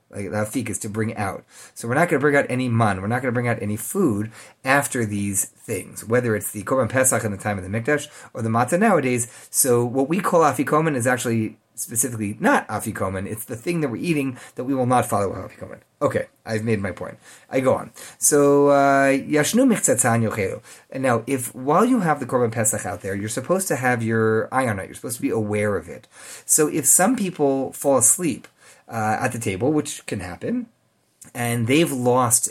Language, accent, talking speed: English, American, 220 wpm